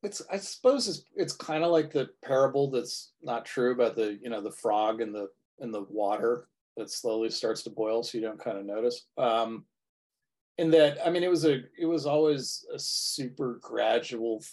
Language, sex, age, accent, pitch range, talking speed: English, male, 30-49, American, 110-145 Hz, 200 wpm